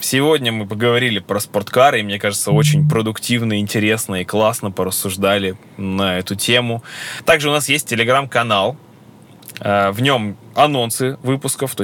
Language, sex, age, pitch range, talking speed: Russian, male, 10-29, 100-125 Hz, 135 wpm